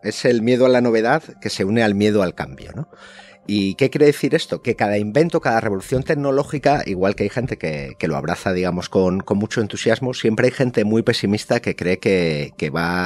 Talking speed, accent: 220 wpm, Spanish